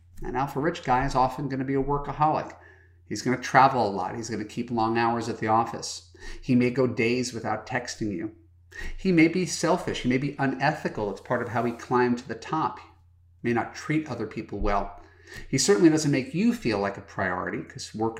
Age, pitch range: 40-59, 100-135 Hz